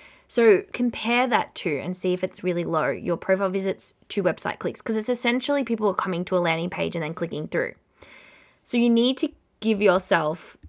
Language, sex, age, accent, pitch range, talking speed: English, female, 20-39, Australian, 180-220 Hz, 200 wpm